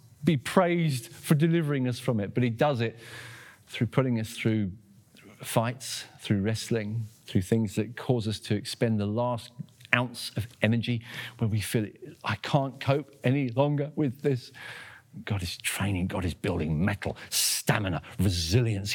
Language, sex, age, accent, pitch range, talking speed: English, male, 40-59, British, 115-190 Hz, 155 wpm